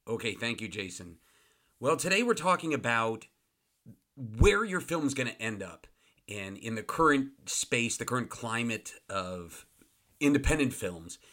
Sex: male